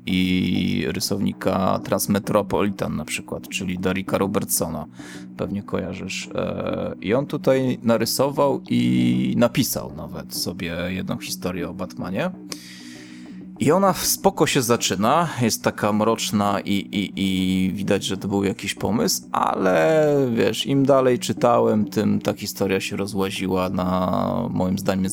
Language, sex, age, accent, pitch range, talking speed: Polish, male, 20-39, native, 95-115 Hz, 125 wpm